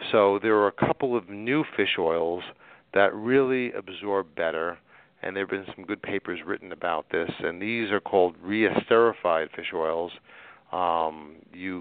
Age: 40-59